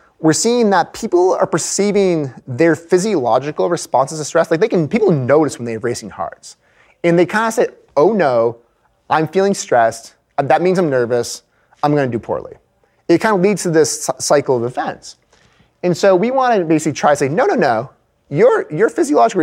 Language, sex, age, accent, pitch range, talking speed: English, male, 30-49, American, 140-195 Hz, 195 wpm